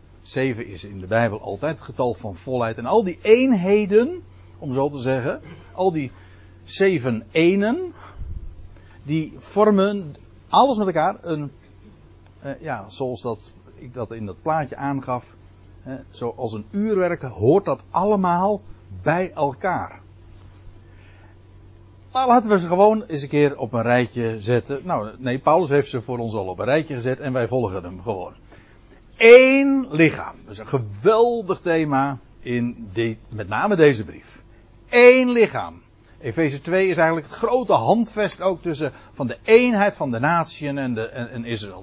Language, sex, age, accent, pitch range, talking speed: Dutch, male, 60-79, Dutch, 105-175 Hz, 160 wpm